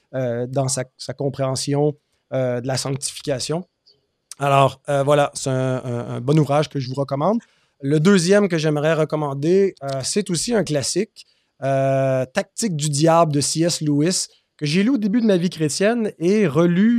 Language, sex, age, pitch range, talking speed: French, male, 30-49, 135-165 Hz, 185 wpm